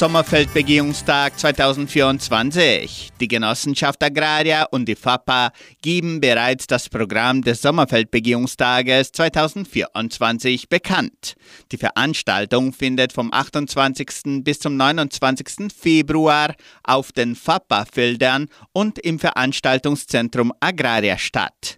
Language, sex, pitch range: German, male, 125-150 Hz